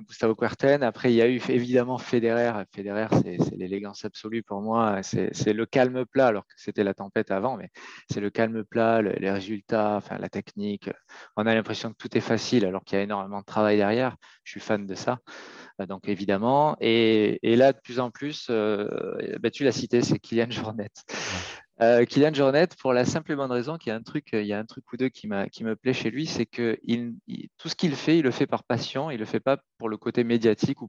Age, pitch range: 20-39, 105-125 Hz